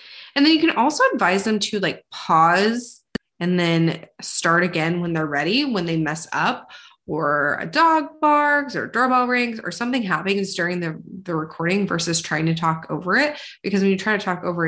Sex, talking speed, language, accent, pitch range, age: female, 195 wpm, English, American, 170-230 Hz, 20-39